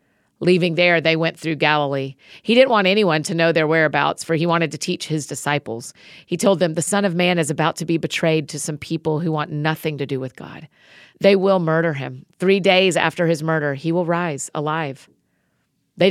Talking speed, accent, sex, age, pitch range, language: 210 wpm, American, female, 40-59, 150-180 Hz, English